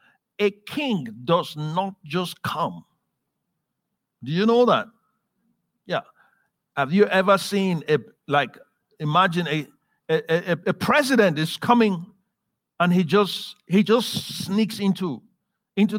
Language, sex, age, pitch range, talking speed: English, male, 50-69, 180-235 Hz, 115 wpm